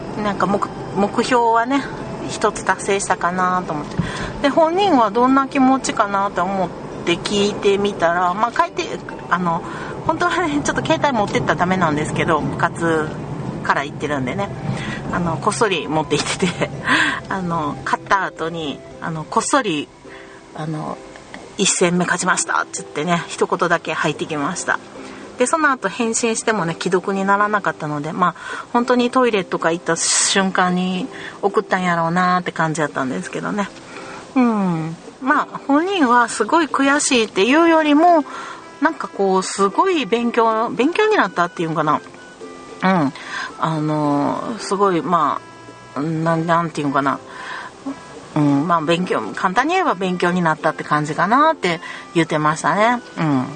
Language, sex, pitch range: Japanese, female, 160-245 Hz